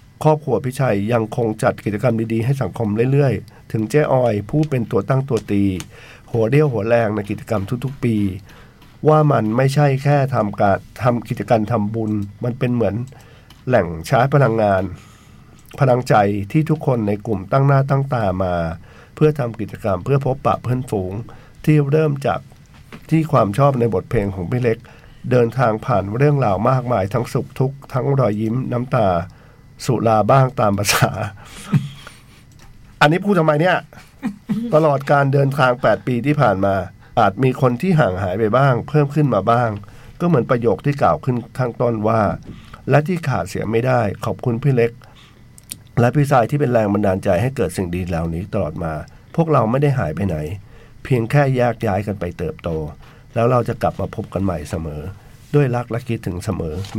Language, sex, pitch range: Thai, male, 105-135 Hz